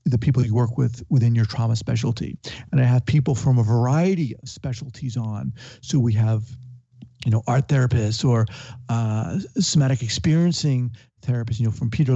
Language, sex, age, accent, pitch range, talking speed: English, male, 50-69, American, 120-145 Hz, 175 wpm